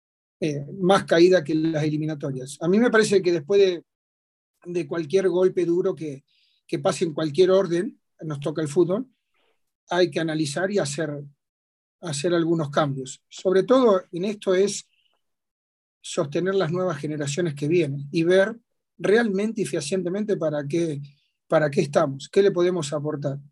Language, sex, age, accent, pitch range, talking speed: Spanish, male, 40-59, Argentinian, 155-185 Hz, 155 wpm